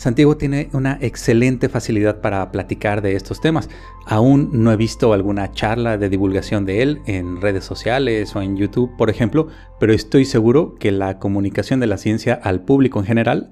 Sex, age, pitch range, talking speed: male, 30-49, 100-125 Hz, 180 wpm